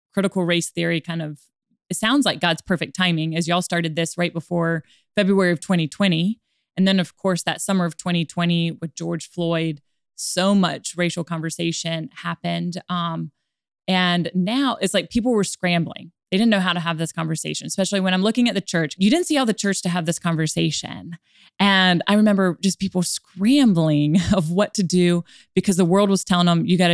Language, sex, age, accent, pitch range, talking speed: English, female, 20-39, American, 170-195 Hz, 195 wpm